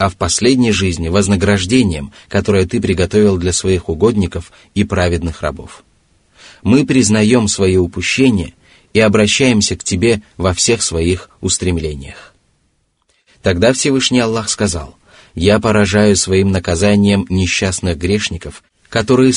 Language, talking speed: Russian, 115 wpm